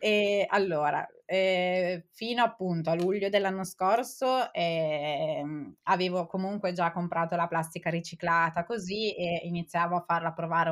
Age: 20-39